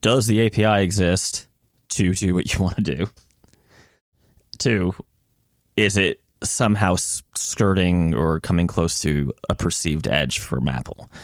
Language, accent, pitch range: English, American, 80-105 Hz